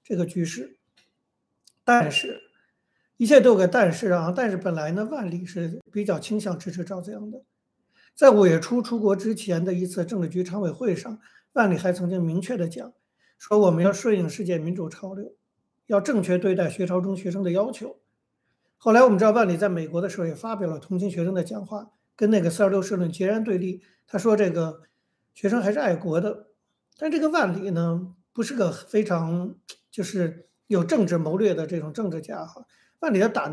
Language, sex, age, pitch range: Chinese, male, 60-79, 175-220 Hz